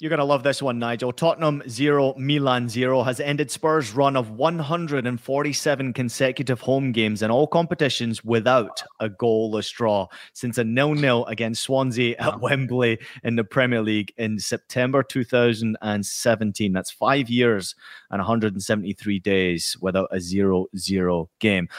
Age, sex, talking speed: 30-49, male, 140 wpm